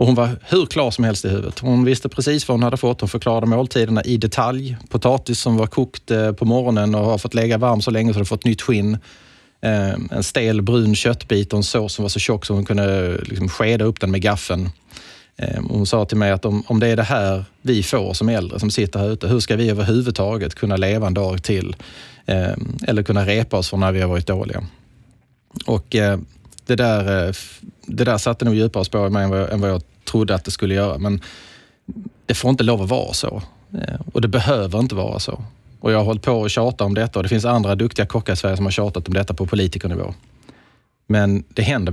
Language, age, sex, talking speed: Swedish, 30-49, male, 230 wpm